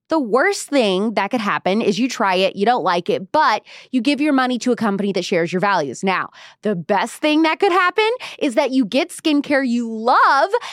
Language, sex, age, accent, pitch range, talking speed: English, female, 20-39, American, 205-275 Hz, 225 wpm